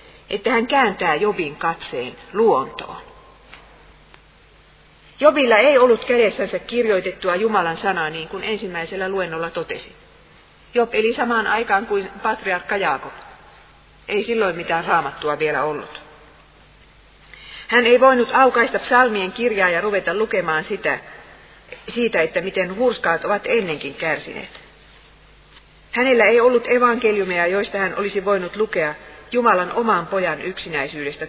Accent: native